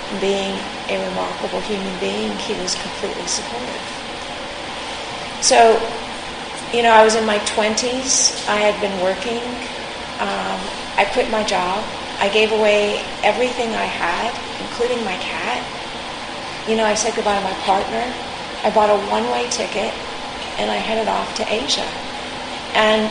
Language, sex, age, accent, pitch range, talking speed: English, female, 40-59, American, 200-225 Hz, 145 wpm